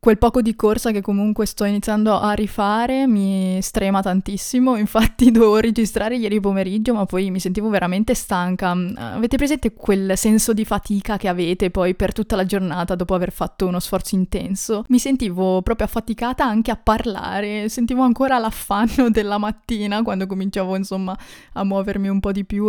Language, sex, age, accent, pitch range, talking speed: Italian, female, 20-39, native, 190-230 Hz, 170 wpm